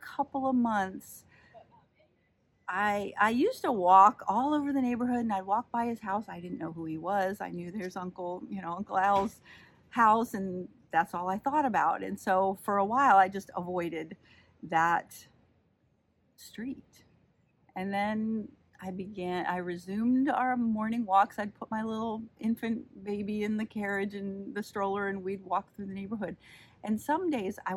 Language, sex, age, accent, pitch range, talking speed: English, female, 40-59, American, 195-255 Hz, 175 wpm